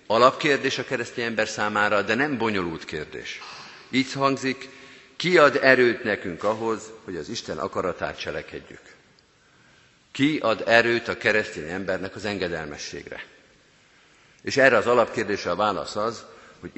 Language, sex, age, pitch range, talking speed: Hungarian, male, 50-69, 105-130 Hz, 130 wpm